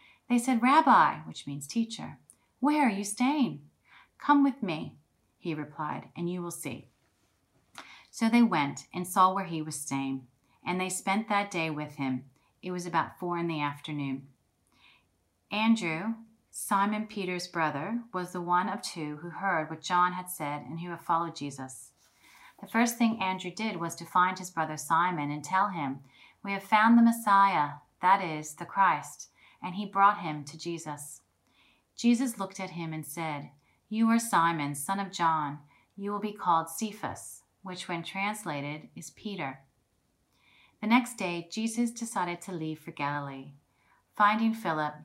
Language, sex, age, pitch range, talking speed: English, female, 30-49, 145-200 Hz, 165 wpm